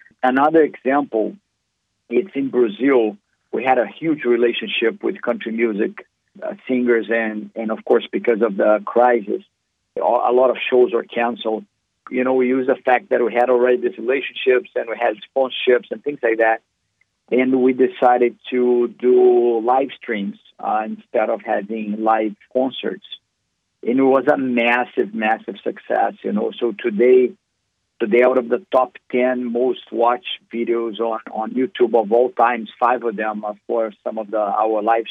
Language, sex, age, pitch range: English, male, 50-69, 110-125 Hz